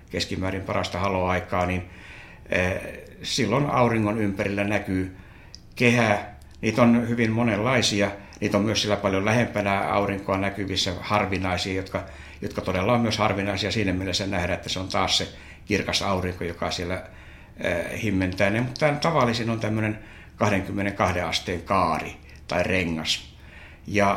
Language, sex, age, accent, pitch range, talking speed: Finnish, male, 60-79, native, 95-110 Hz, 130 wpm